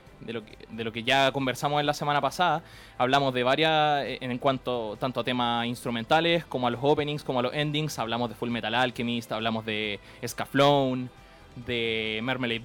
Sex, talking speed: male, 185 wpm